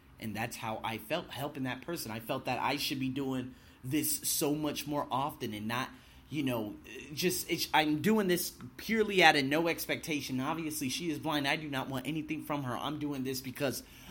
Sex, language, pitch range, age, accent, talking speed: male, English, 120-155 Hz, 30-49, American, 205 wpm